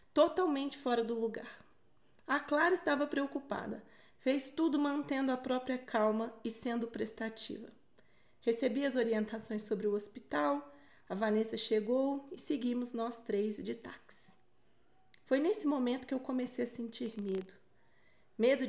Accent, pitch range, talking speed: Brazilian, 220-265 Hz, 135 wpm